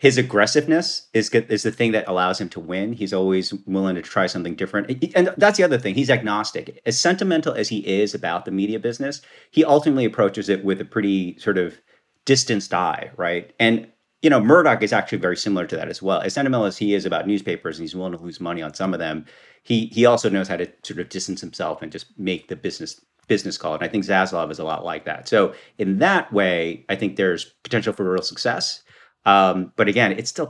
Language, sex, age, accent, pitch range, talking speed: English, male, 40-59, American, 95-125 Hz, 230 wpm